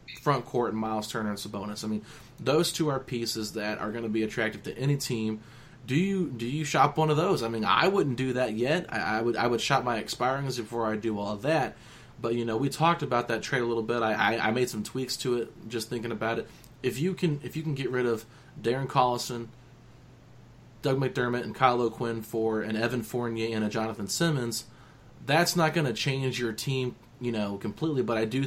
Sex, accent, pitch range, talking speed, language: male, American, 110-130 Hz, 235 wpm, English